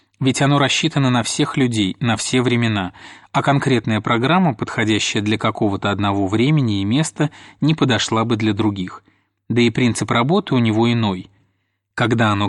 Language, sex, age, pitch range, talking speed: Russian, male, 20-39, 105-130 Hz, 160 wpm